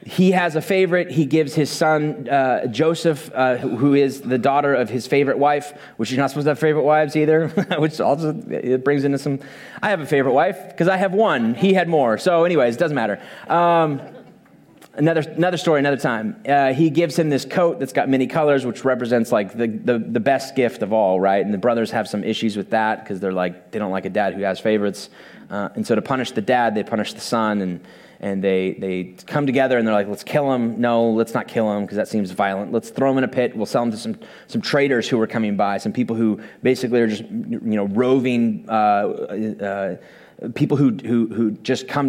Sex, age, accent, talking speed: male, 20-39, American, 230 wpm